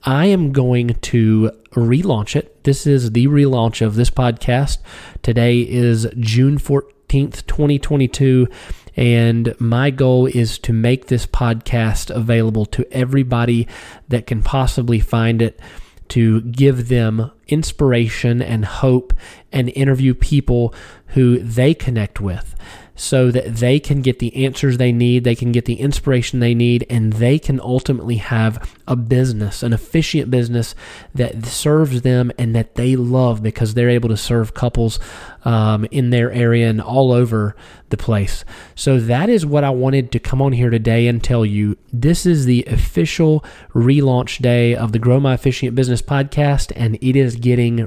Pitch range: 115-135 Hz